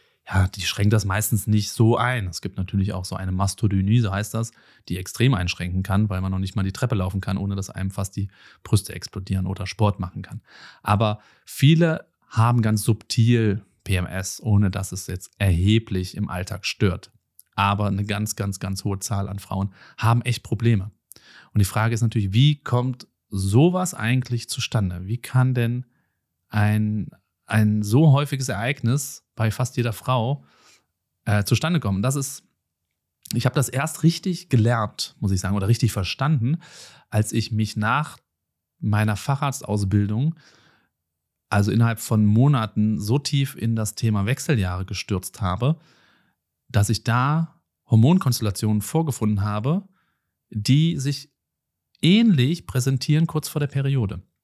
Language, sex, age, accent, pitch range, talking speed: German, male, 30-49, German, 100-130 Hz, 150 wpm